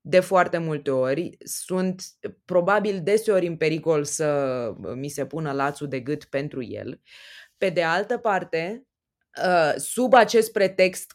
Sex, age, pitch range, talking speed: female, 20-39, 155-225 Hz, 135 wpm